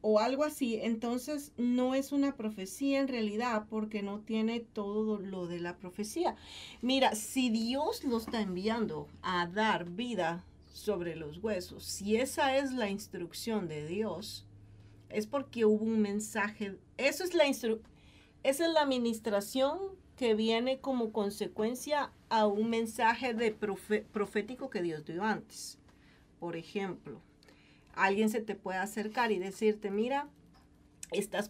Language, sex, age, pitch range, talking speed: Spanish, female, 40-59, 195-235 Hz, 130 wpm